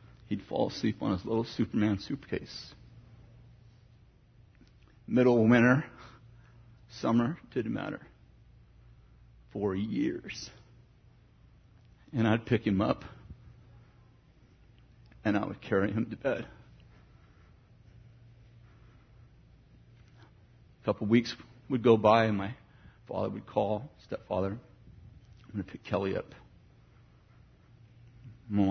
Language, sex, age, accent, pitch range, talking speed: English, male, 50-69, American, 100-120 Hz, 100 wpm